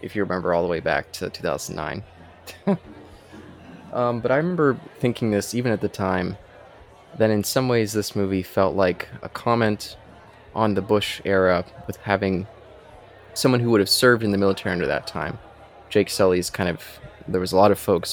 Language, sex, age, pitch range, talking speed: English, male, 20-39, 90-105 Hz, 185 wpm